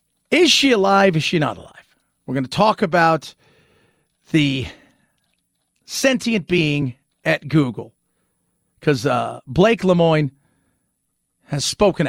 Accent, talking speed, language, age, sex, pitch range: American, 115 wpm, English, 40-59, male, 140-170 Hz